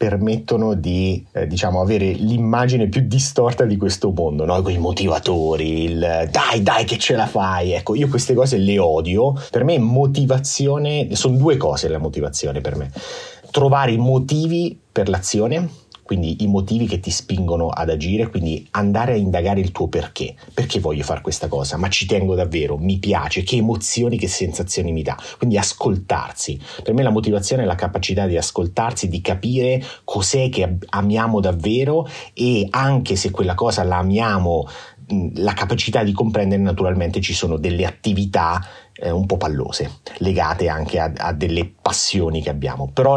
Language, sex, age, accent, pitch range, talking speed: Italian, male, 30-49, native, 90-120 Hz, 165 wpm